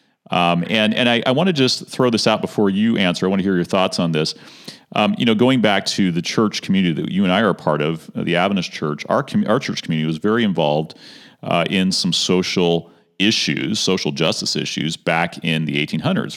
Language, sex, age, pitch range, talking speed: English, male, 40-59, 80-100 Hz, 225 wpm